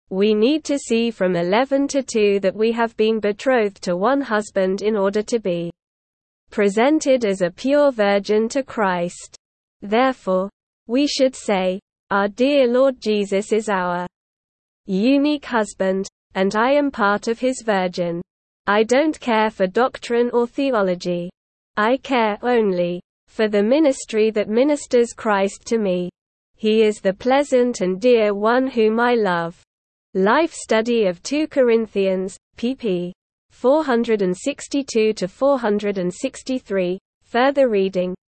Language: Filipino